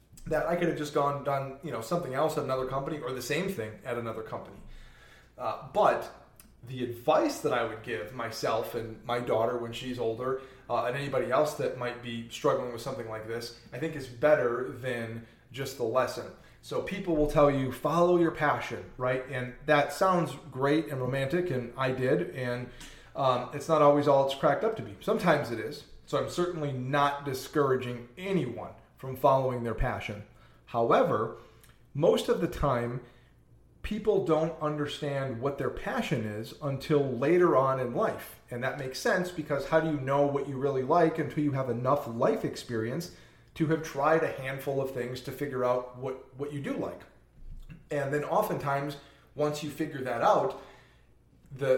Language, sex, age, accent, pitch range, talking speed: English, male, 30-49, American, 125-150 Hz, 185 wpm